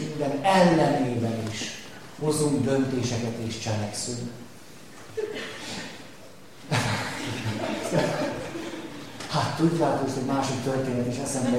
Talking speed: 80 wpm